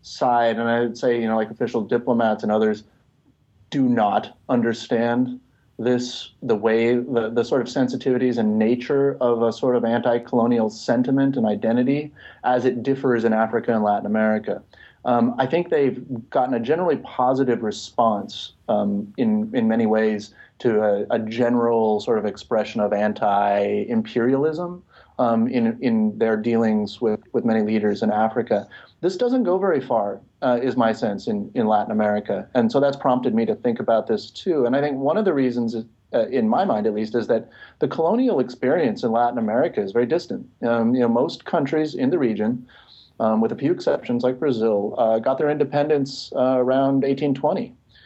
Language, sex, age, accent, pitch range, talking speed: English, male, 30-49, American, 110-135 Hz, 180 wpm